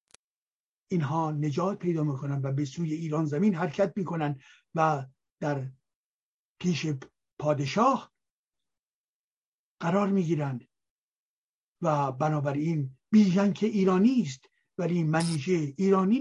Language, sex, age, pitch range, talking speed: Persian, male, 60-79, 145-205 Hz, 95 wpm